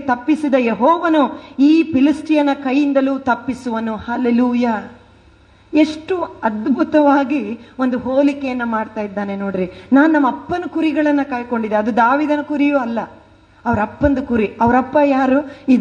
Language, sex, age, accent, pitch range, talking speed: Kannada, female, 30-49, native, 220-280 Hz, 100 wpm